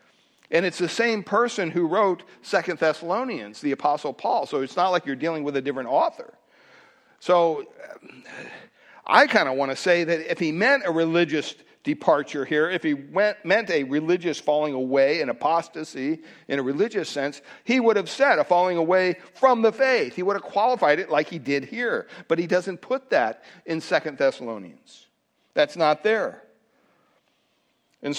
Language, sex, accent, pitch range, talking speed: English, male, American, 155-210 Hz, 170 wpm